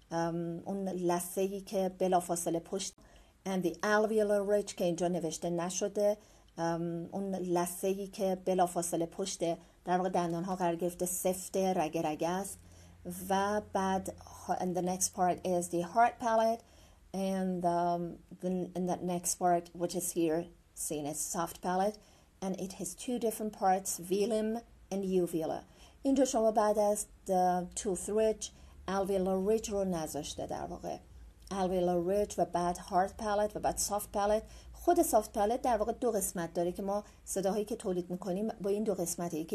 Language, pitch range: English, 175-205 Hz